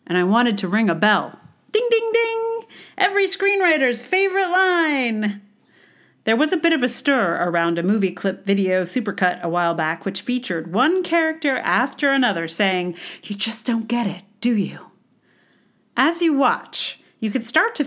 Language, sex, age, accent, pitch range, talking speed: English, female, 40-59, American, 180-265 Hz, 170 wpm